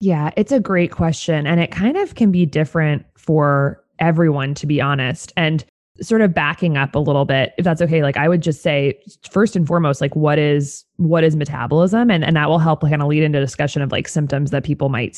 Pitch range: 145-175 Hz